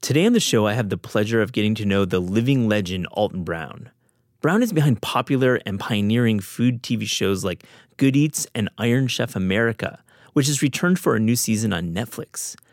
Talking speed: 200 wpm